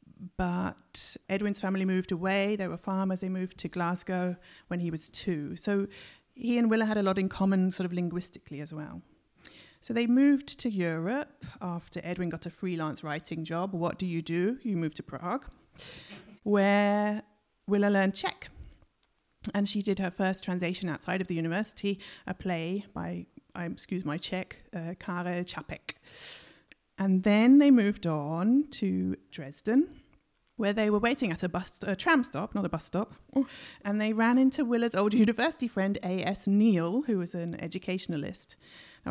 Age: 30-49